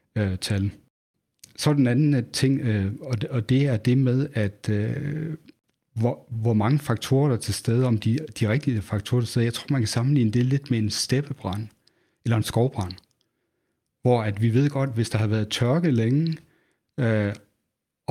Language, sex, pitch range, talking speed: Danish, male, 110-135 Hz, 195 wpm